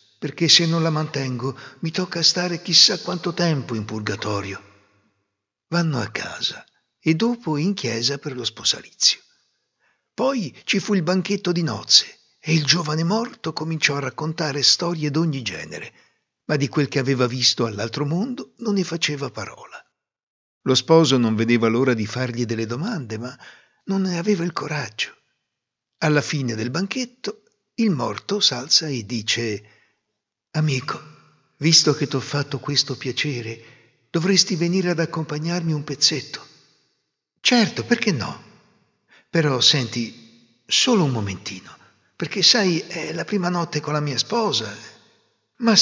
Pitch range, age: 120-175 Hz, 60-79